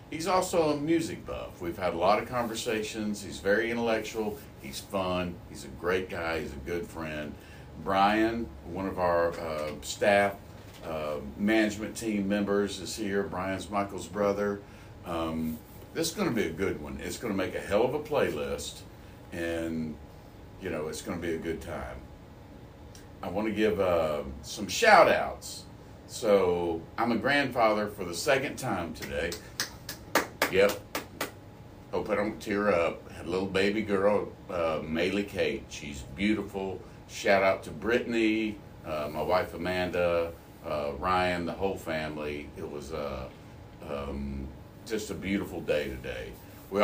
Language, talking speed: English, 155 wpm